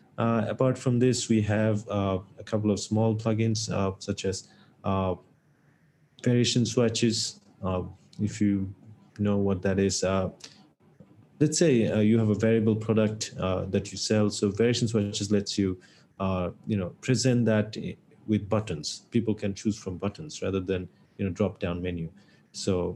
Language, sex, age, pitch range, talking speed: English, male, 30-49, 100-120 Hz, 165 wpm